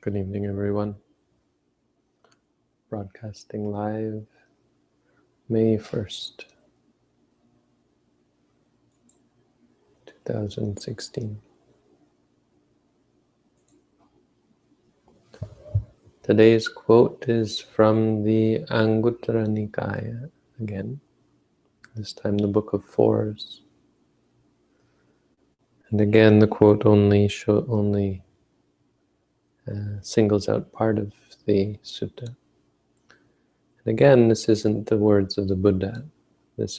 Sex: male